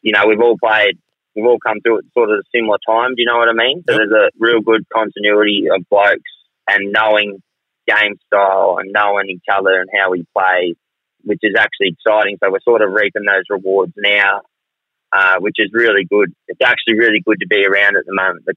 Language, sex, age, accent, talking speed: English, male, 20-39, Australian, 225 wpm